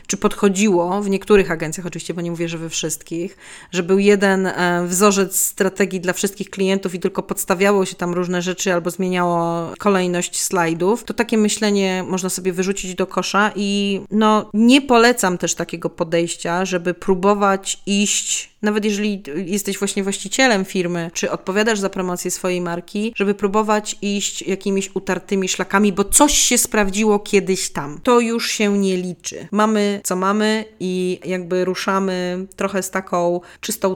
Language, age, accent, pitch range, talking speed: Polish, 30-49, native, 175-200 Hz, 155 wpm